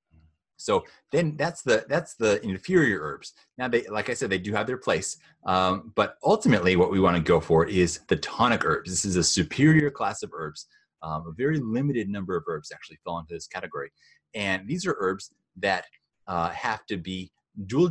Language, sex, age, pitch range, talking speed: English, male, 30-49, 90-140 Hz, 200 wpm